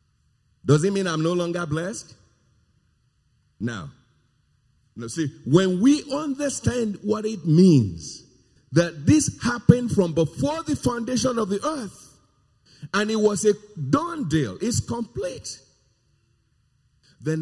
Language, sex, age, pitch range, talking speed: English, male, 50-69, 130-195 Hz, 120 wpm